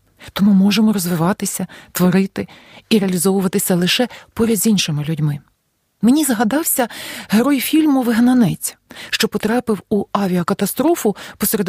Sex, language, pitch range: female, Ukrainian, 185-235 Hz